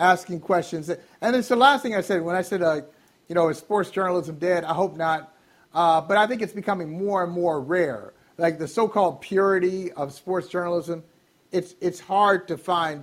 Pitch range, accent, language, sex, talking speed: 170-220 Hz, American, English, male, 205 wpm